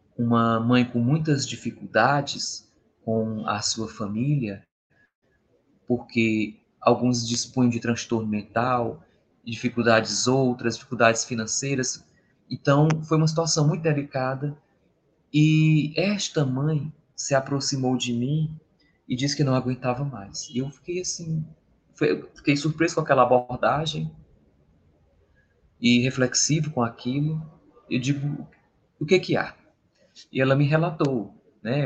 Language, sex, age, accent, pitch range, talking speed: Portuguese, male, 20-39, Brazilian, 115-145 Hz, 115 wpm